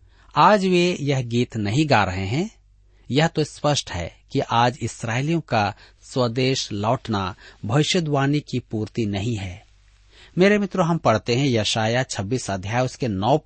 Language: Hindi